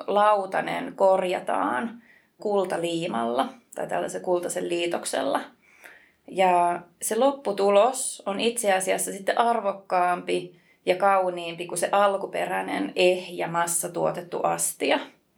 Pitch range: 180-225 Hz